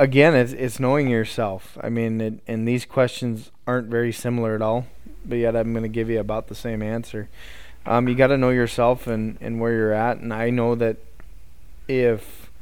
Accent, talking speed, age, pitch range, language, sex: American, 200 wpm, 20-39, 110-125 Hz, English, male